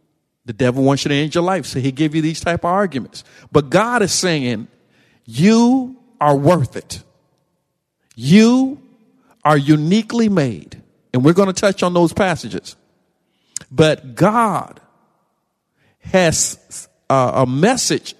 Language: English